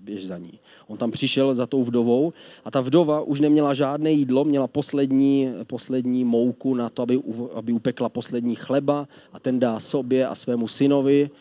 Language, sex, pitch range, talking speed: Czech, male, 115-145 Hz, 180 wpm